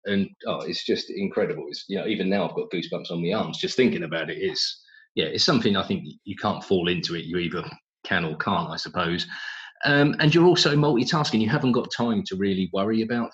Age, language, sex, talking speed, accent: 30-49, English, male, 230 wpm, British